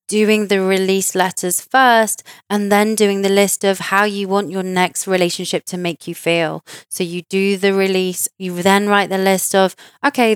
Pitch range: 180-200 Hz